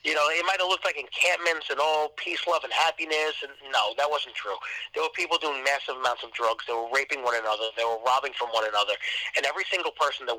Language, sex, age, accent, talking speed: English, male, 30-49, American, 255 wpm